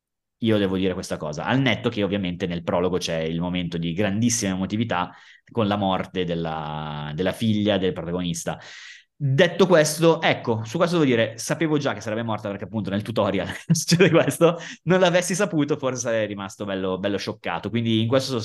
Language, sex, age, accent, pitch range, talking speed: Italian, male, 20-39, native, 95-125 Hz, 180 wpm